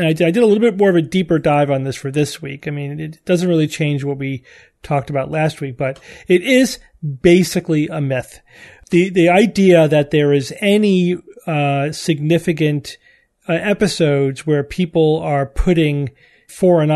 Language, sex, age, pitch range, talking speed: English, male, 40-59, 145-185 Hz, 175 wpm